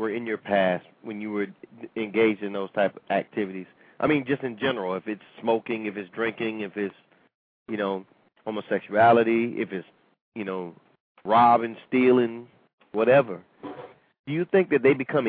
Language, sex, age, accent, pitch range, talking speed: English, male, 30-49, American, 115-165 Hz, 165 wpm